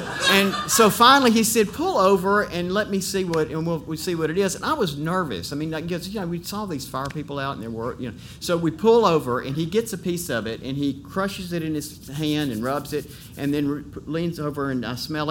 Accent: American